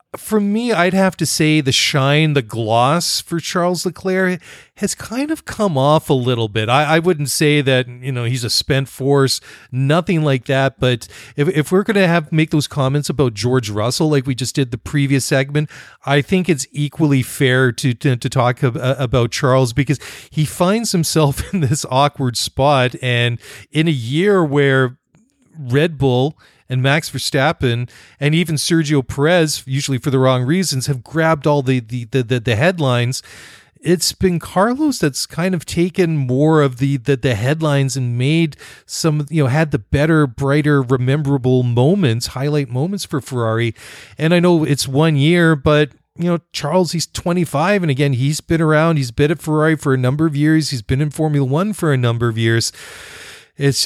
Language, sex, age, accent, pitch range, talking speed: English, male, 40-59, American, 130-160 Hz, 185 wpm